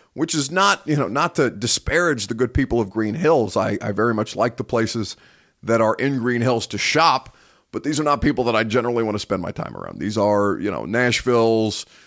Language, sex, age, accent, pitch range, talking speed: English, male, 30-49, American, 105-140 Hz, 235 wpm